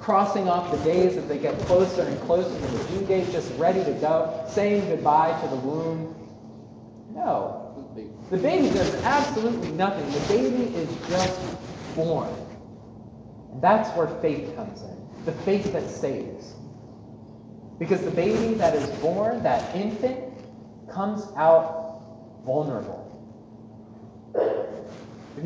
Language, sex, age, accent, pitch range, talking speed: English, male, 30-49, American, 120-195 Hz, 130 wpm